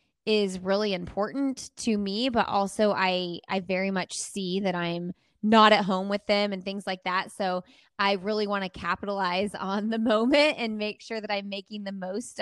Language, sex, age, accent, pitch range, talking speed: English, female, 20-39, American, 190-220 Hz, 195 wpm